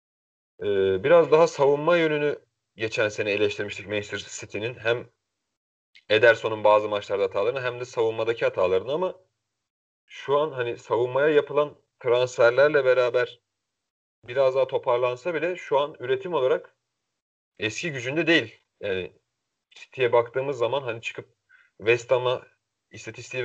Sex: male